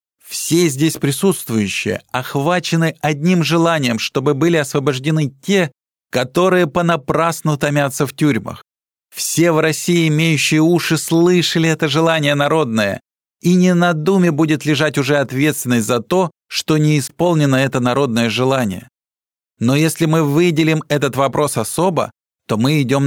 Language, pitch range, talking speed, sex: Russian, 140-170 Hz, 130 wpm, male